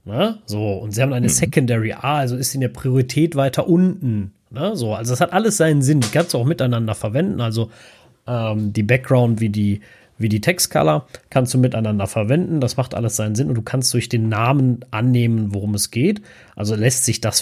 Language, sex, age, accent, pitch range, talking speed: German, male, 30-49, German, 110-135 Hz, 210 wpm